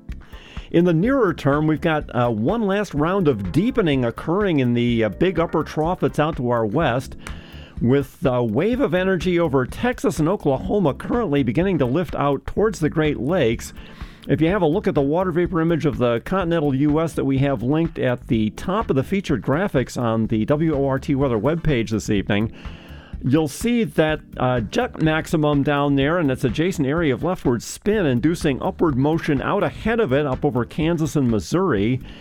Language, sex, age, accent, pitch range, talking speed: English, male, 50-69, American, 125-170 Hz, 190 wpm